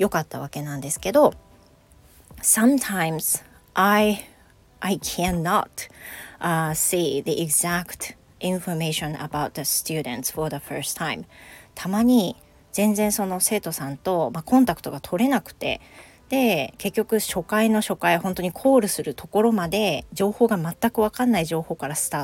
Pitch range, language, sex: 160-220 Hz, Japanese, female